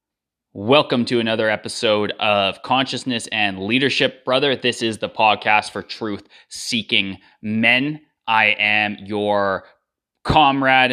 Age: 20-39